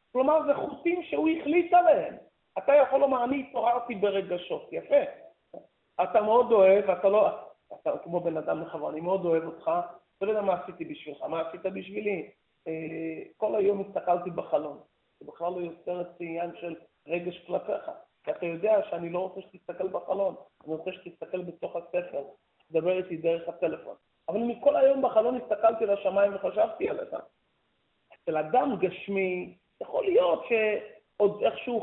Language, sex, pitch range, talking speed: Hebrew, male, 180-275 Hz, 145 wpm